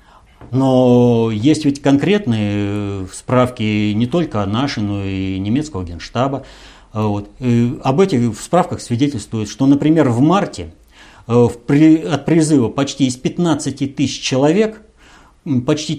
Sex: male